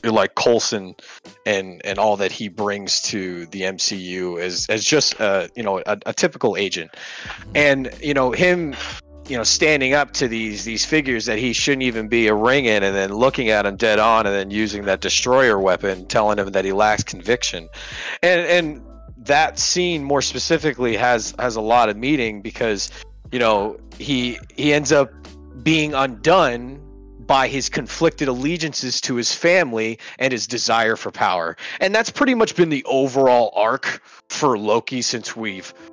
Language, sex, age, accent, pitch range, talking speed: English, male, 30-49, American, 105-140 Hz, 175 wpm